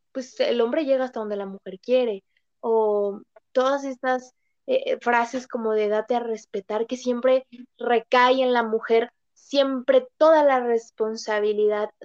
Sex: female